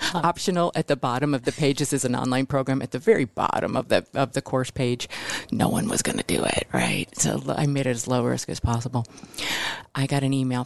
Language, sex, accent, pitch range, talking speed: English, female, American, 130-155 Hz, 235 wpm